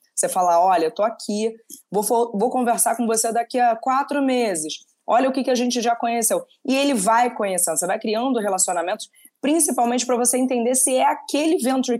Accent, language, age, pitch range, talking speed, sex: Brazilian, Portuguese, 20-39, 200-255 Hz, 195 wpm, female